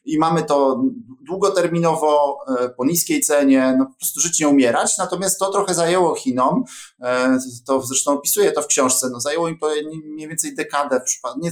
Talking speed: 165 wpm